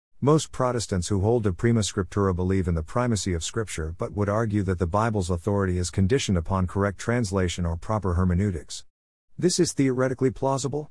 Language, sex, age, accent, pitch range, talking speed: English, male, 50-69, American, 90-115 Hz, 175 wpm